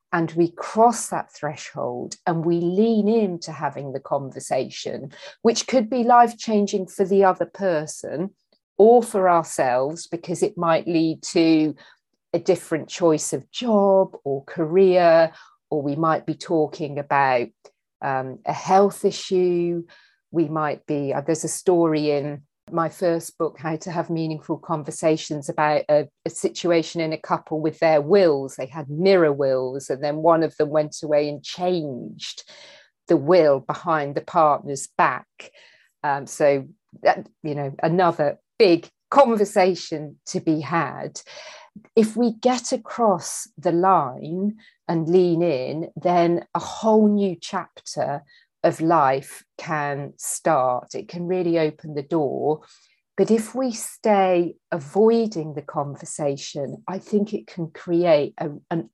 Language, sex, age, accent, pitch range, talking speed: English, female, 40-59, British, 155-190 Hz, 140 wpm